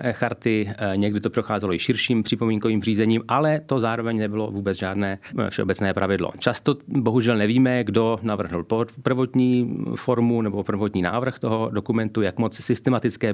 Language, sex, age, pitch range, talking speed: Slovak, male, 40-59, 105-120 Hz, 140 wpm